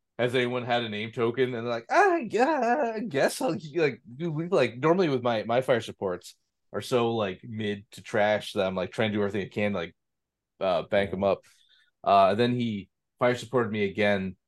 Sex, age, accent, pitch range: male, 30-49, American, 100-125 Hz